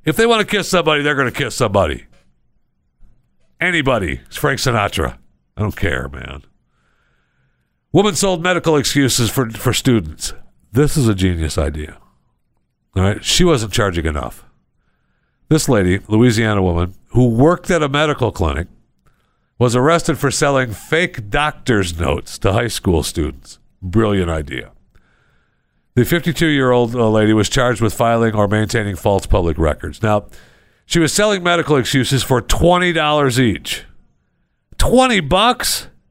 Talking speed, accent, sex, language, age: 140 wpm, American, male, English, 60-79